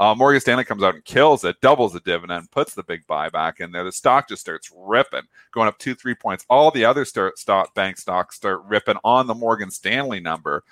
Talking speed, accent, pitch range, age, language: 220 wpm, American, 100-130 Hz, 40-59, English